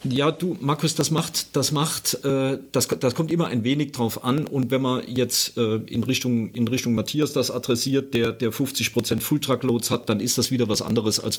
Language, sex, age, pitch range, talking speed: German, male, 50-69, 110-130 Hz, 215 wpm